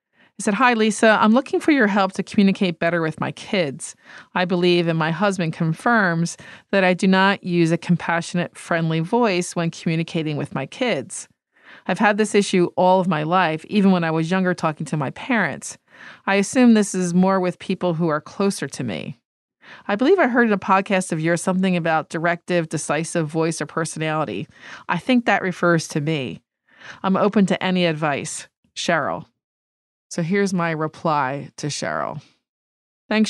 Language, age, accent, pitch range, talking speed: English, 40-59, American, 160-200 Hz, 180 wpm